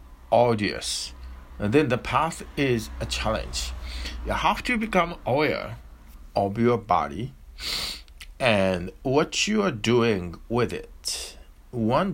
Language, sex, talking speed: English, male, 110 wpm